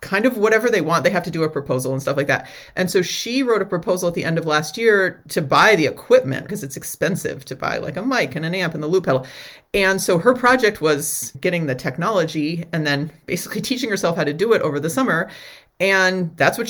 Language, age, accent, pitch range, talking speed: English, 30-49, American, 150-195 Hz, 250 wpm